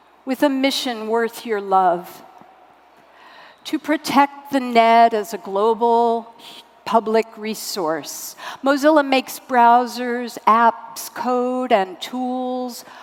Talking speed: 100 wpm